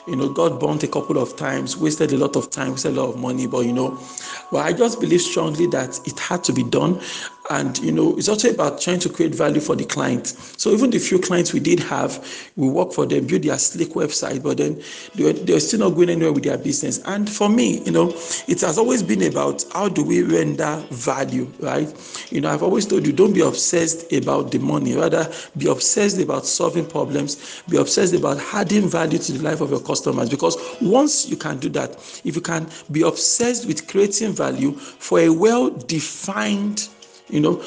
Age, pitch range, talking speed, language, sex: 50-69, 155-205 Hz, 215 wpm, English, male